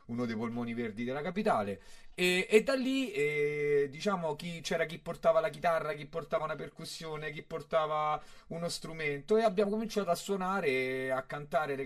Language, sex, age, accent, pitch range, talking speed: Italian, male, 30-49, native, 130-200 Hz, 175 wpm